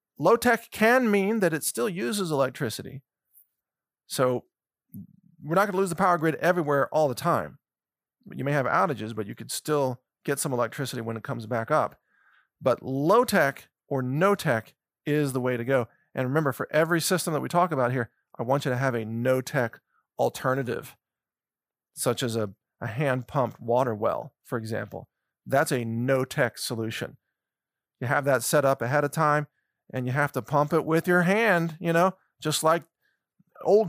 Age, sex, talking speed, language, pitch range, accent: 40-59, male, 175 wpm, English, 130-165 Hz, American